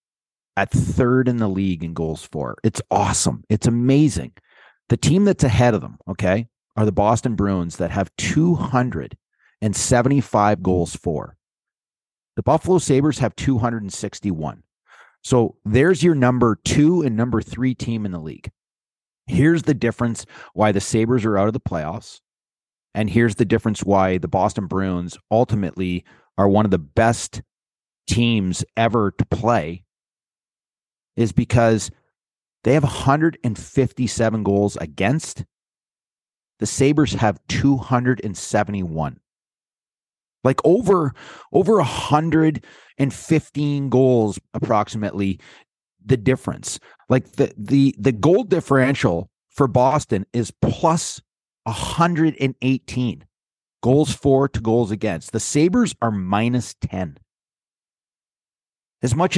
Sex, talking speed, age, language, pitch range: male, 115 wpm, 30-49, English, 100-135 Hz